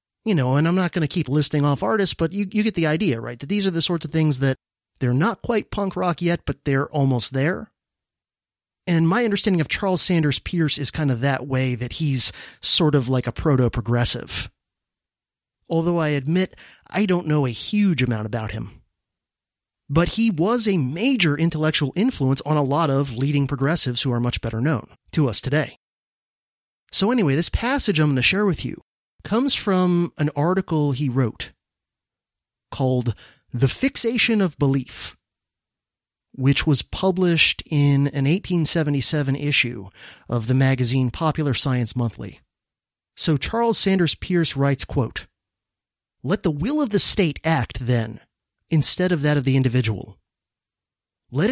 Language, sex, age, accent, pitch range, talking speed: English, male, 30-49, American, 130-180 Hz, 165 wpm